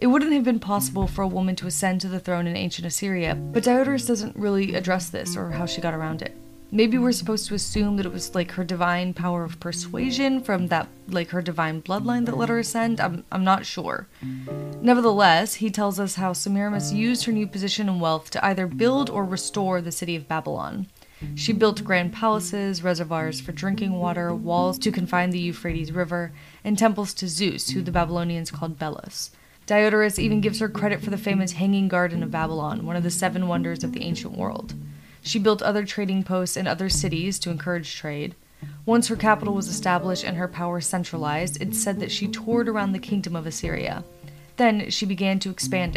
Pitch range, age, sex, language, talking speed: 170-205 Hz, 20-39, female, English, 205 wpm